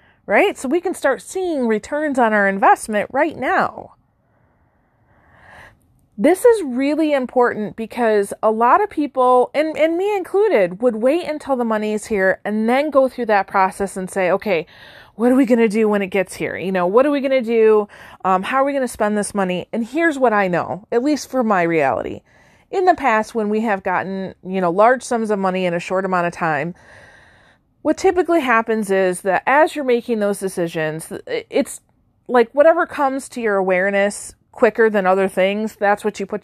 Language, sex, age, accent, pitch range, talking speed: English, female, 30-49, American, 195-265 Hz, 200 wpm